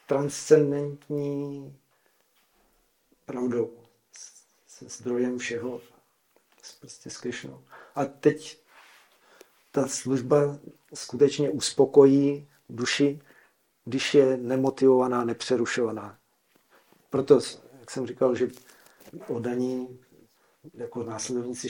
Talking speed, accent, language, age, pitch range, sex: 70 wpm, native, Czech, 50-69, 115-135 Hz, male